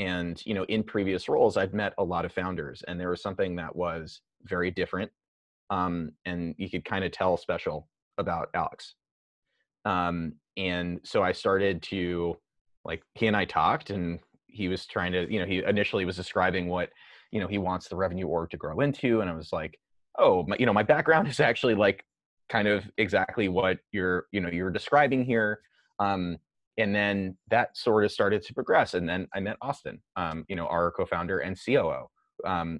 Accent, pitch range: American, 85-100 Hz